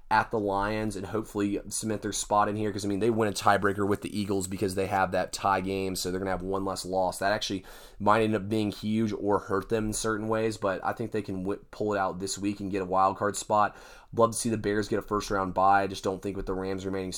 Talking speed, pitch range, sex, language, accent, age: 275 wpm, 95-105 Hz, male, English, American, 20-39